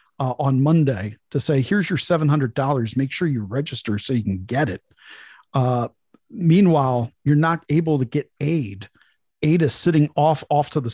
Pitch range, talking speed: 125-150 Hz, 175 wpm